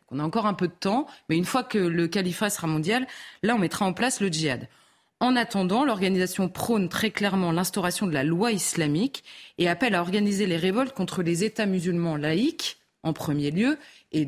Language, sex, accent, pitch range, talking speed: French, female, French, 165-220 Hz, 200 wpm